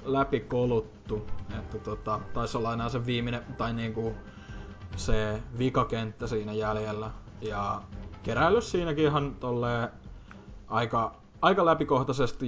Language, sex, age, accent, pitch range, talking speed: Finnish, male, 20-39, native, 110-130 Hz, 100 wpm